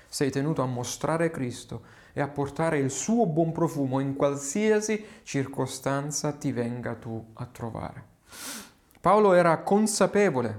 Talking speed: 130 wpm